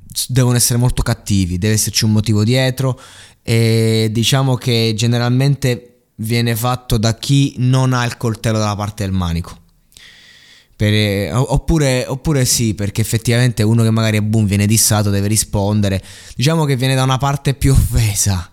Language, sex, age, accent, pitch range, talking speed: Italian, male, 20-39, native, 105-125 Hz, 155 wpm